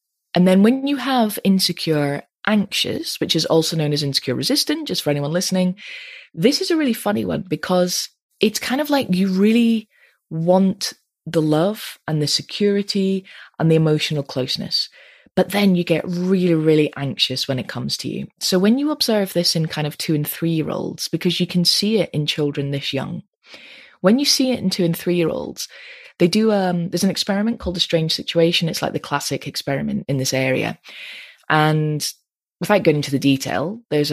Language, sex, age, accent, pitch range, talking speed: English, female, 20-39, British, 155-215 Hz, 185 wpm